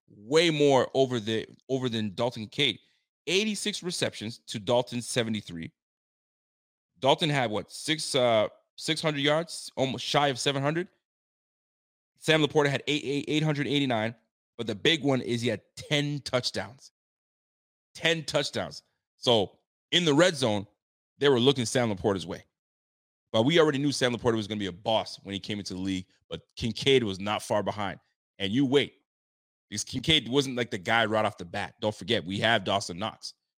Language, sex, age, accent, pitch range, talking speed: English, male, 30-49, American, 105-145 Hz, 175 wpm